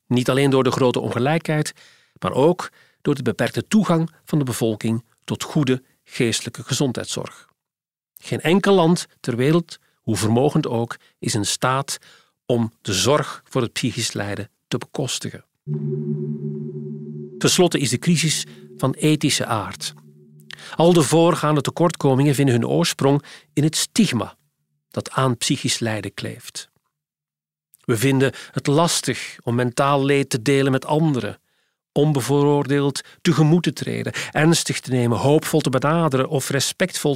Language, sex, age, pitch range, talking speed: Dutch, male, 40-59, 125-170 Hz, 135 wpm